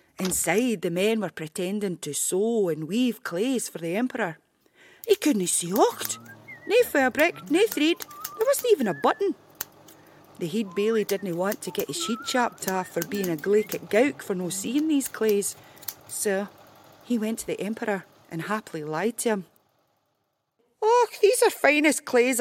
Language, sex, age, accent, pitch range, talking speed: English, female, 40-59, British, 190-285 Hz, 170 wpm